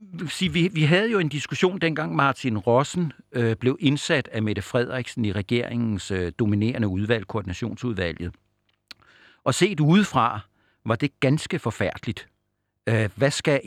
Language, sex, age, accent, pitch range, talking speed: Danish, male, 60-79, native, 105-135 Hz, 120 wpm